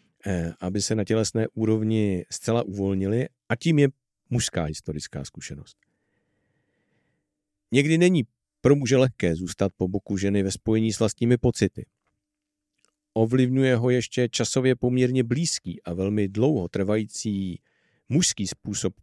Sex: male